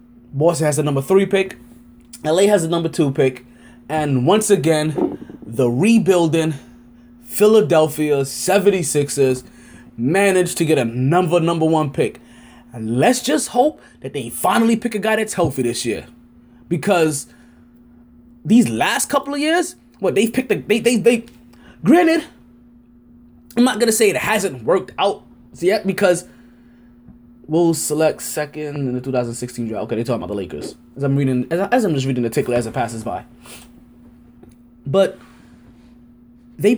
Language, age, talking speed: English, 20-39, 155 wpm